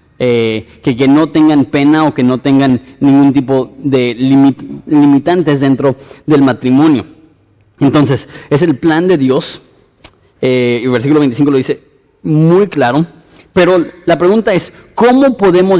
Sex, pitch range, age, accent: male, 135-165 Hz, 30-49, Mexican